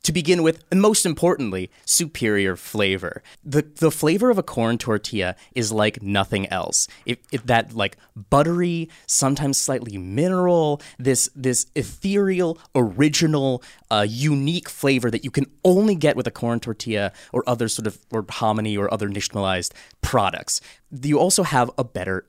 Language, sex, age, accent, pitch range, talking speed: English, male, 20-39, American, 105-150 Hz, 155 wpm